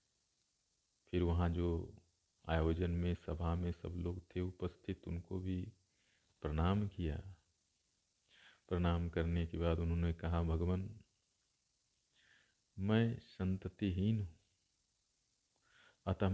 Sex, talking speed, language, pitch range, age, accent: male, 95 wpm, Hindi, 85-105 Hz, 50-69, native